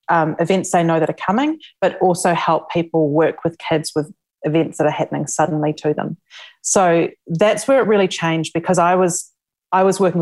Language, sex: English, female